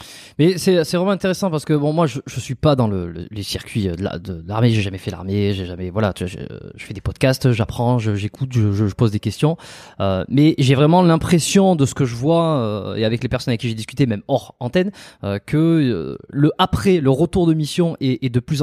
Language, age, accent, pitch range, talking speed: French, 20-39, French, 115-155 Hz, 255 wpm